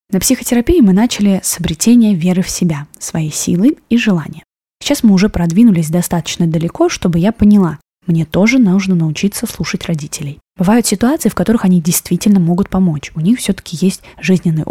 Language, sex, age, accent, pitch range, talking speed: Russian, female, 20-39, native, 175-225 Hz, 165 wpm